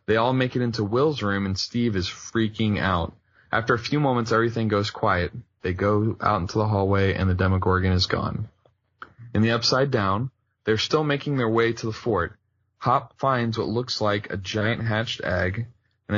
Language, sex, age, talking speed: English, male, 20-39, 195 wpm